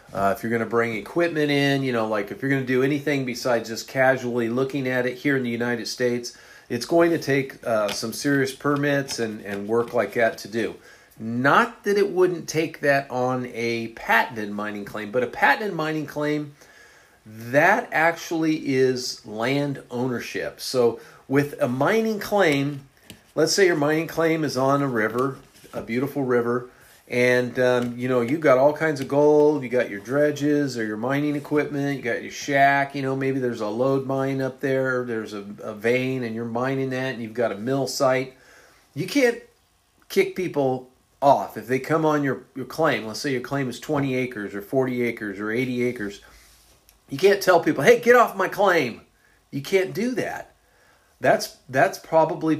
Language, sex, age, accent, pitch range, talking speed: English, male, 40-59, American, 120-150 Hz, 190 wpm